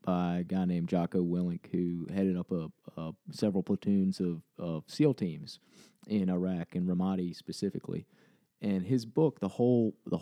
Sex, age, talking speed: male, 30-49, 165 wpm